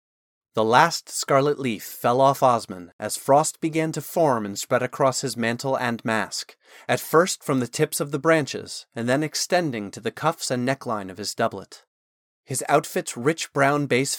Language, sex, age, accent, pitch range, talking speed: English, male, 30-49, American, 115-155 Hz, 180 wpm